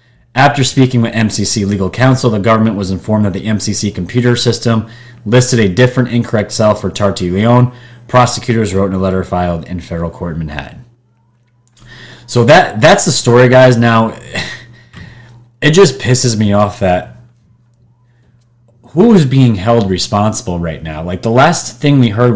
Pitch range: 100-125 Hz